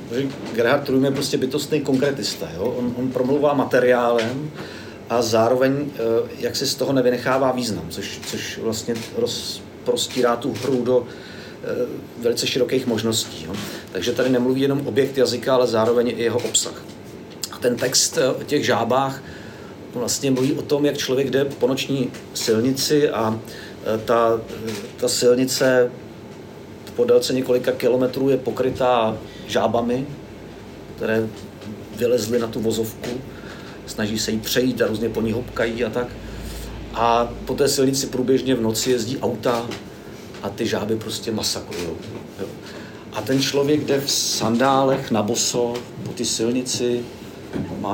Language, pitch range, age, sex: Czech, 110-130 Hz, 50-69, male